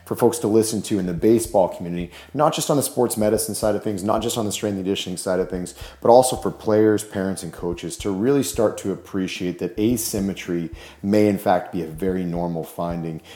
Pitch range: 85-105 Hz